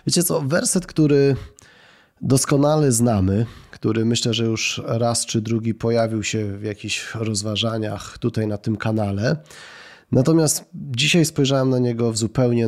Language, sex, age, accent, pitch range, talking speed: Polish, male, 30-49, native, 110-135 Hz, 135 wpm